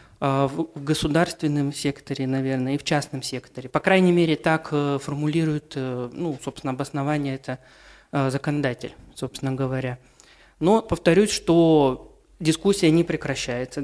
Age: 20-39